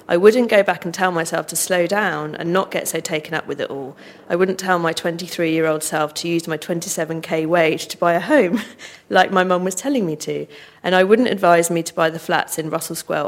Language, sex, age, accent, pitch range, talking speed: English, female, 40-59, British, 155-185 Hz, 240 wpm